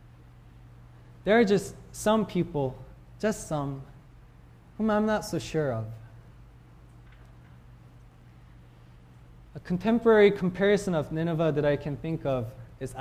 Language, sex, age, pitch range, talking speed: English, male, 20-39, 115-180 Hz, 110 wpm